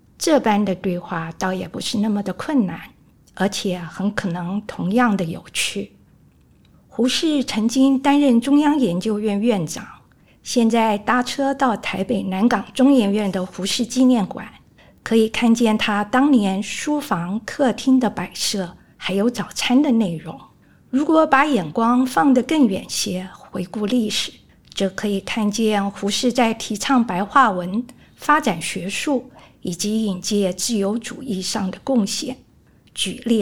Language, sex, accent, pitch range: Chinese, female, native, 195-255 Hz